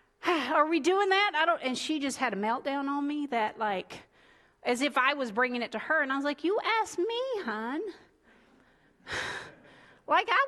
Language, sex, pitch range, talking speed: English, female, 260-350 Hz, 195 wpm